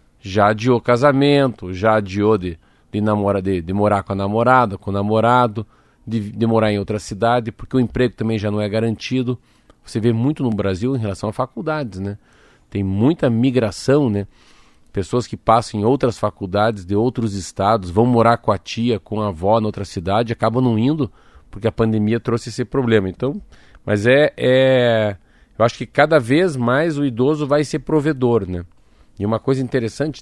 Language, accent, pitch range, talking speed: Portuguese, Brazilian, 100-130 Hz, 185 wpm